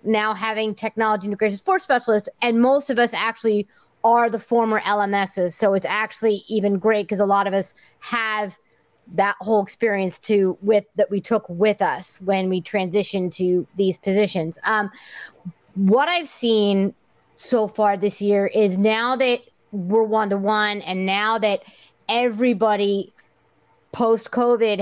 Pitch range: 200-230 Hz